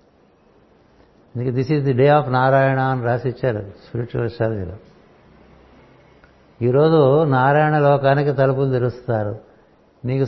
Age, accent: 60-79, native